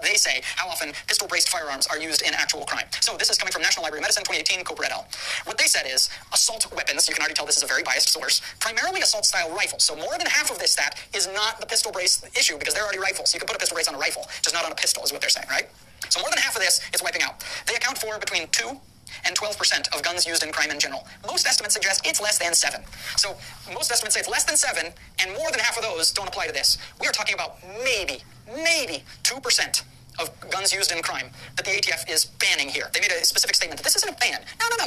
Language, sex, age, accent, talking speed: English, male, 30-49, American, 270 wpm